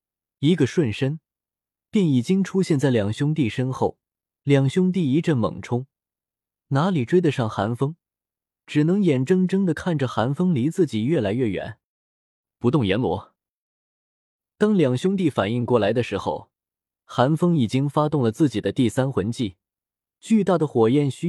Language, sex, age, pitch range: Chinese, male, 20-39, 115-170 Hz